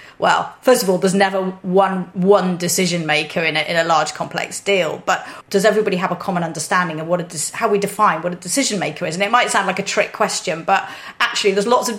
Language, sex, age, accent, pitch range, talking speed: English, female, 30-49, British, 170-205 Hz, 230 wpm